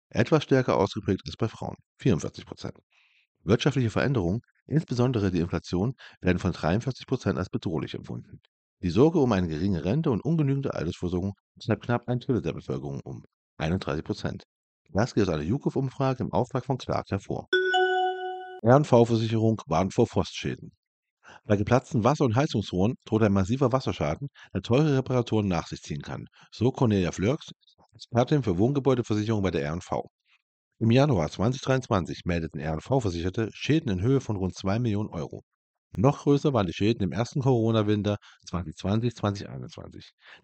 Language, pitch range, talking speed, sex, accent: German, 95-130 Hz, 140 wpm, male, German